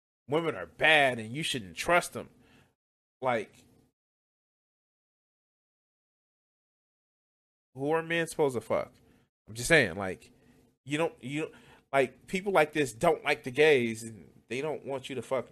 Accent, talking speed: American, 145 wpm